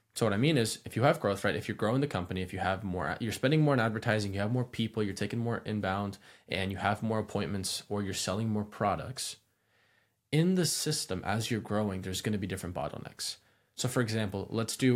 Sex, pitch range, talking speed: male, 100-120 Hz, 235 wpm